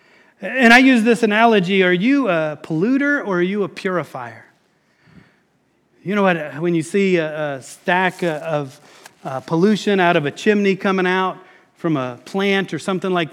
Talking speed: 170 wpm